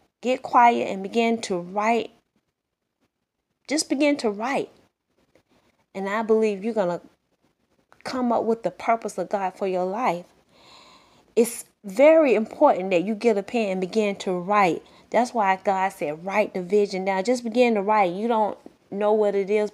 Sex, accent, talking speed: female, American, 170 wpm